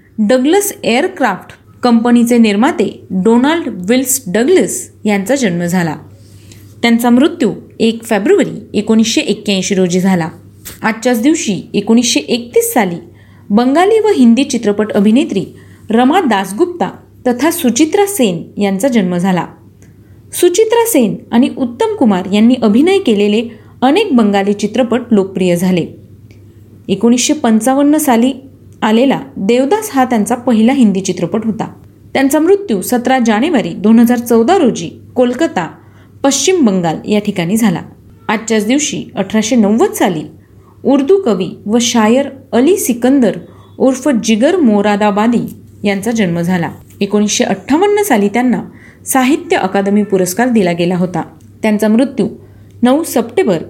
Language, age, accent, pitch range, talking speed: Marathi, 30-49, native, 200-260 Hz, 115 wpm